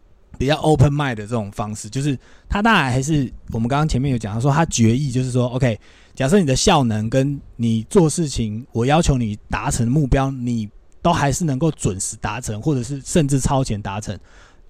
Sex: male